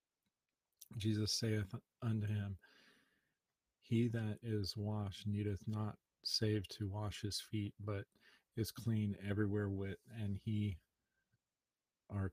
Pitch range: 100-110 Hz